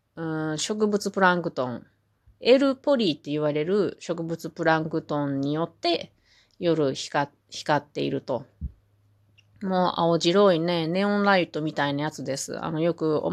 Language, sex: Japanese, female